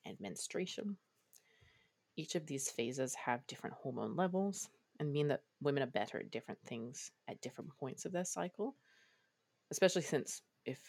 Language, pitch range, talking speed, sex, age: English, 135-180 Hz, 155 wpm, female, 30-49